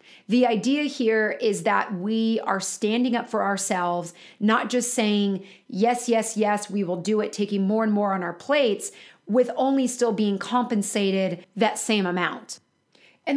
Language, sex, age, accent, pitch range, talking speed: English, female, 30-49, American, 195-235 Hz, 165 wpm